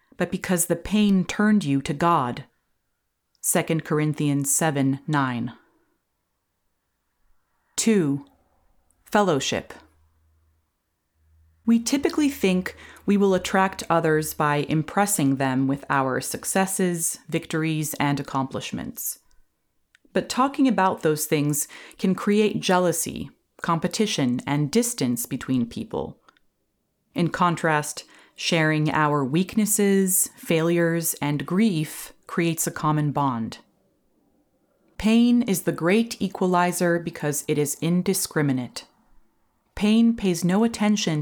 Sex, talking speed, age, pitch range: female, 100 wpm, 30-49, 145-195 Hz